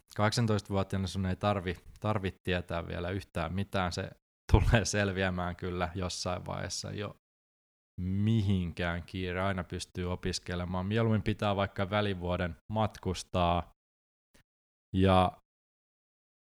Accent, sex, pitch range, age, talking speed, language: native, male, 90-110 Hz, 20-39, 100 wpm, Finnish